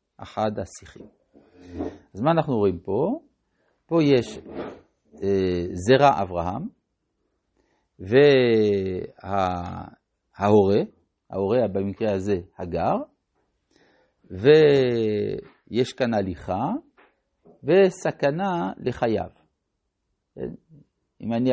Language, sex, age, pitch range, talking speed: Hebrew, male, 60-79, 100-150 Hz, 65 wpm